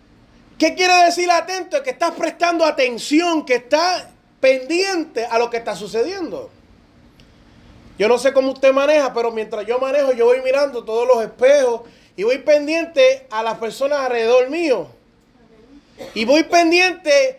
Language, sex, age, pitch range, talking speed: Spanish, male, 20-39, 235-315 Hz, 150 wpm